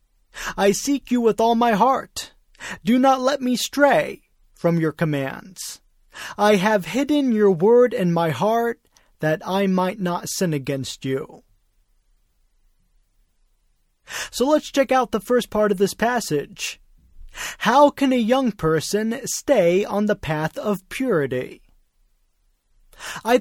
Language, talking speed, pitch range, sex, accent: English, 135 wpm, 160-245 Hz, male, American